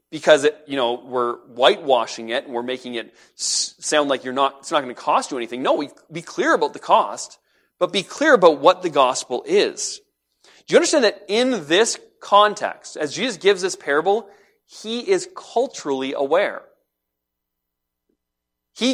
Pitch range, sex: 135-220 Hz, male